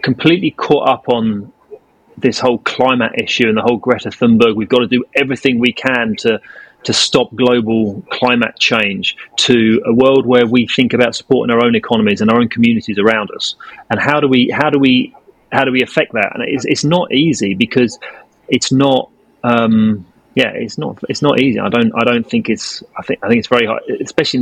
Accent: British